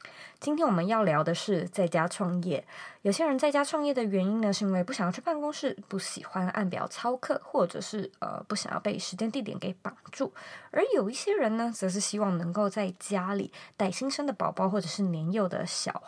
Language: Chinese